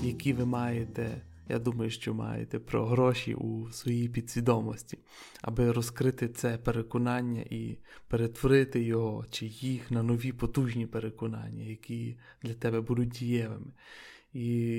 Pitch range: 115-130 Hz